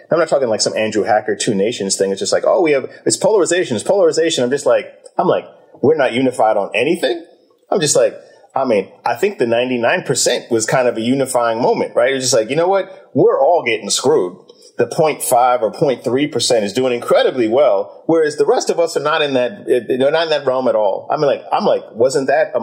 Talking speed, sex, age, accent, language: 240 wpm, male, 30-49, American, English